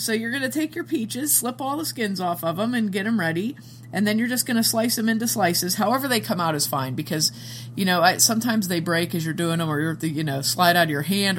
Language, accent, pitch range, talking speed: English, American, 145-205 Hz, 275 wpm